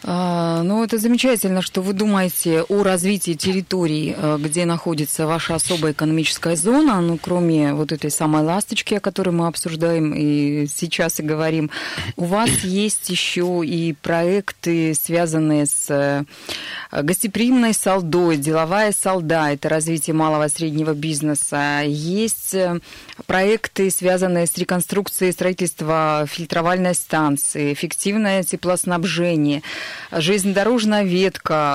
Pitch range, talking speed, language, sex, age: 160-200 Hz, 110 wpm, Russian, female, 20-39